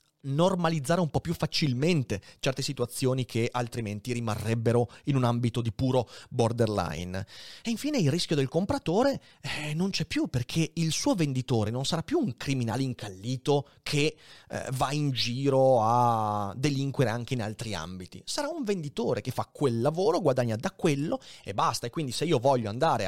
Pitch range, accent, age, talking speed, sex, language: 120-165 Hz, native, 30-49, 170 wpm, male, Italian